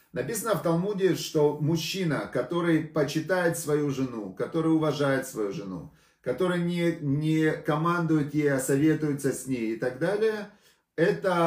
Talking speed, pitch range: 135 wpm, 140-165 Hz